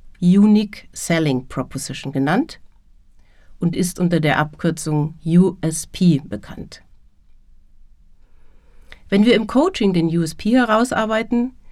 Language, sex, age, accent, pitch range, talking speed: German, female, 60-79, German, 140-210 Hz, 90 wpm